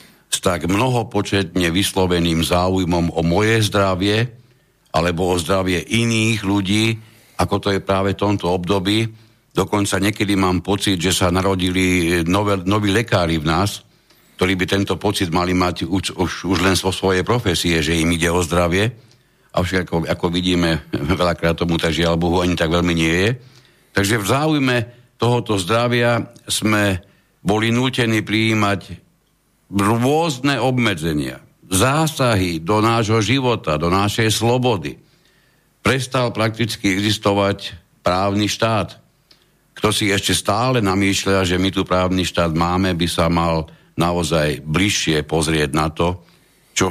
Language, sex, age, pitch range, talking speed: Slovak, male, 60-79, 85-105 Hz, 135 wpm